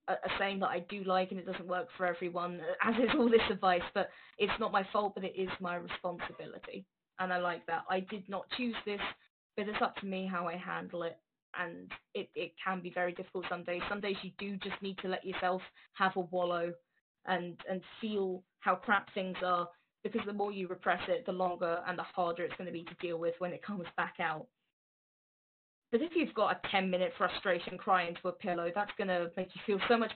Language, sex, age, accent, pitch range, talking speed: English, female, 10-29, British, 180-205 Hz, 230 wpm